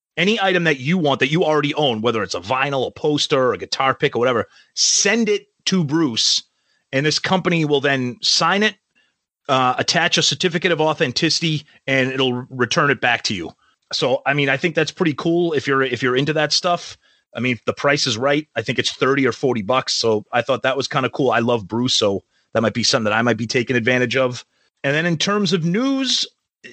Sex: male